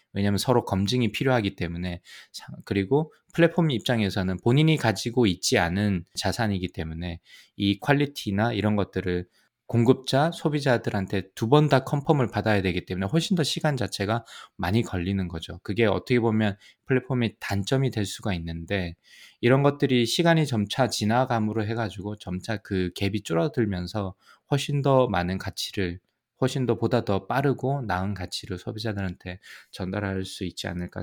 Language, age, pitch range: Korean, 20-39, 95-130 Hz